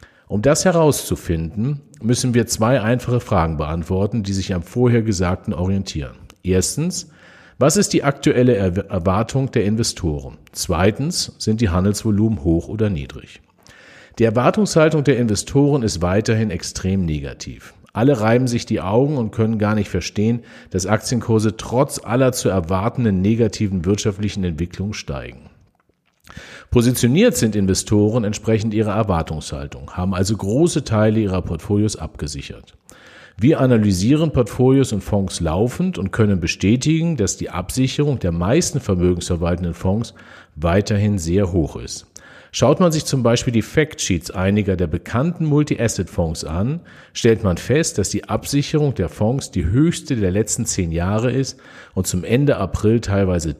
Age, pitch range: 50-69, 95-125 Hz